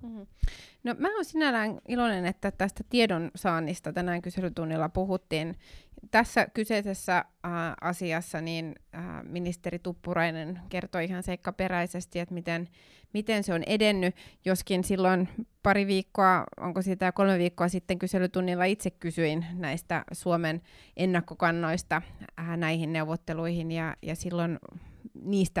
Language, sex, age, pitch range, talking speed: Finnish, female, 20-39, 165-200 Hz, 120 wpm